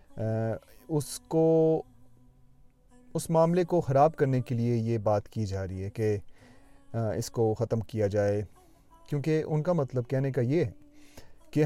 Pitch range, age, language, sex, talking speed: 110-145 Hz, 30-49, Urdu, male, 150 wpm